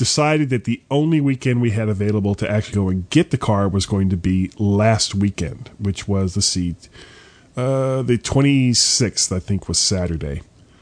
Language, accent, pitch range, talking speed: English, American, 100-140 Hz, 175 wpm